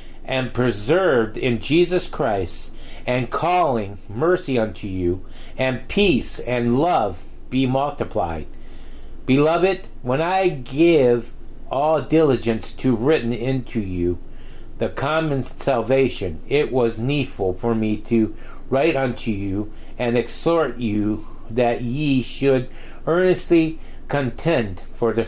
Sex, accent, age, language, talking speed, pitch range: male, American, 50-69, English, 115 wpm, 115-145 Hz